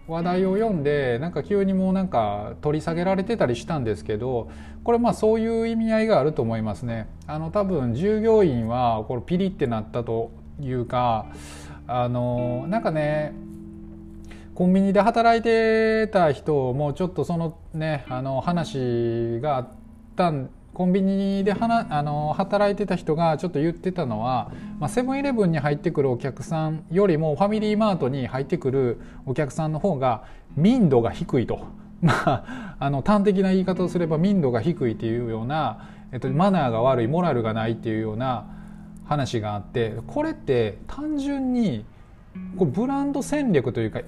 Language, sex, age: Japanese, male, 20-39